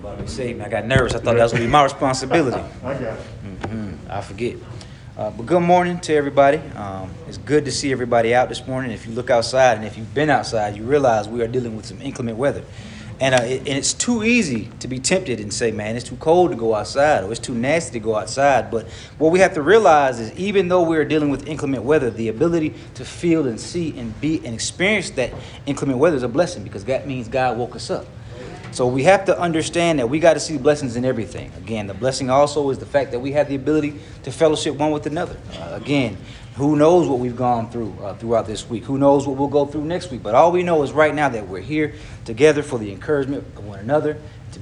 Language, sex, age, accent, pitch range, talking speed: English, male, 30-49, American, 115-150 Hz, 245 wpm